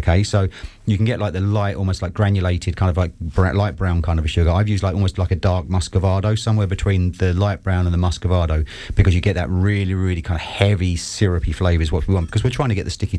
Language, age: English, 30-49